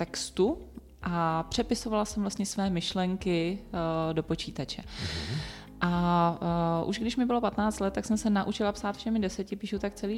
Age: 30-49